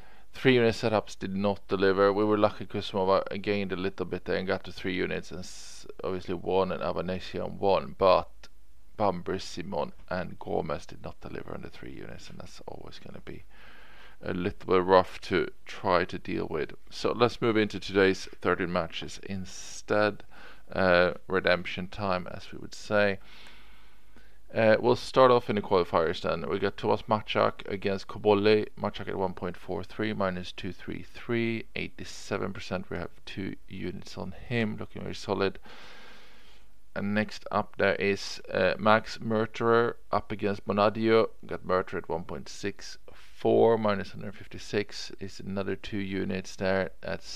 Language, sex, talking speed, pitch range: English, male, 170 wpm, 95-110 Hz